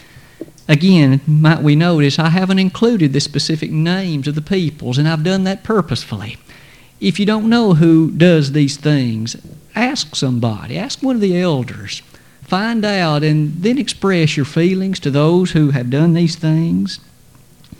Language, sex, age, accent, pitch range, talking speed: English, male, 50-69, American, 140-180 Hz, 160 wpm